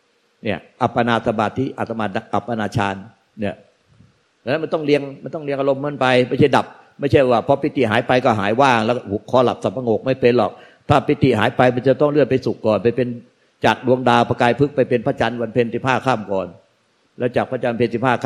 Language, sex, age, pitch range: Thai, male, 60-79, 105-125 Hz